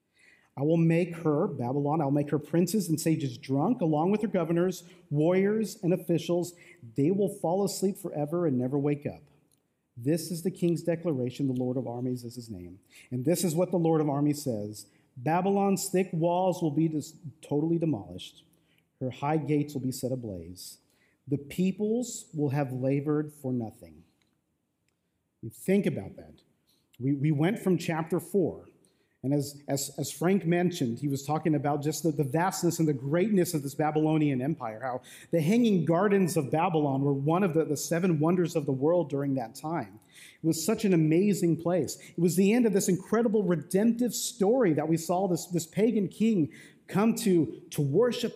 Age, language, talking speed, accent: 40-59, English, 180 wpm, American